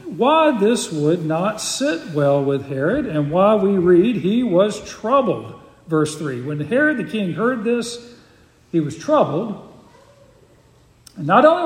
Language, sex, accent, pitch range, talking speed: English, male, American, 160-205 Hz, 150 wpm